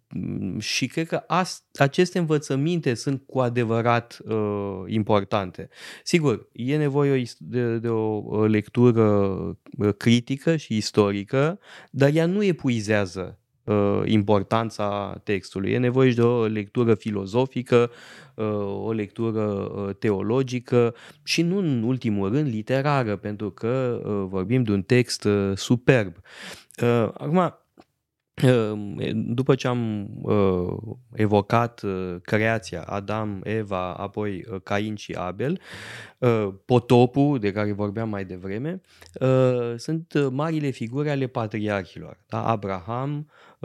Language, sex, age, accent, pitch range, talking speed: Romanian, male, 20-39, native, 105-135 Hz, 105 wpm